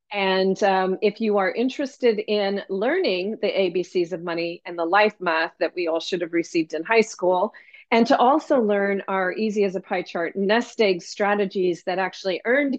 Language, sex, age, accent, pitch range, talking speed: English, female, 40-59, American, 185-225 Hz, 190 wpm